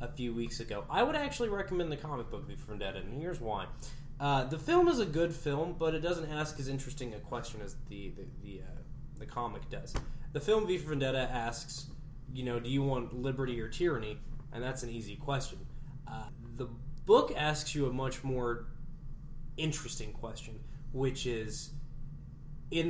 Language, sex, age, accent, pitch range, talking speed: English, male, 20-39, American, 120-150 Hz, 190 wpm